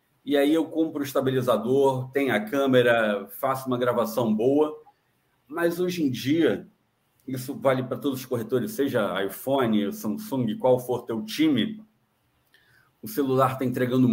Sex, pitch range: male, 120-155 Hz